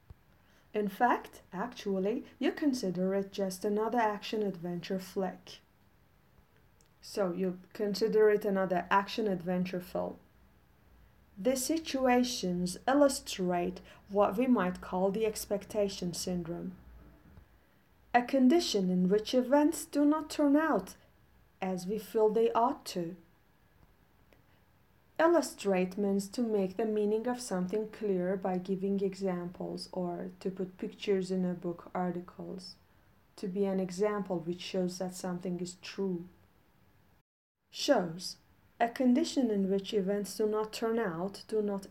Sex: female